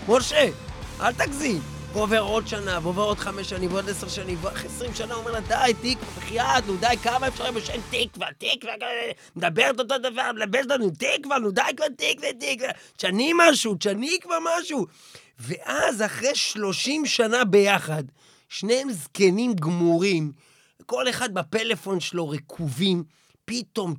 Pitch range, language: 175-255 Hz, Hebrew